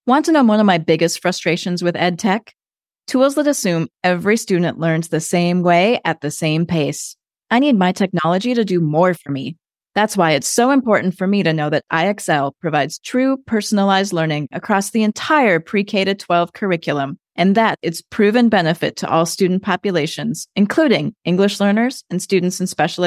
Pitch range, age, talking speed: 170-220 Hz, 30-49, 180 wpm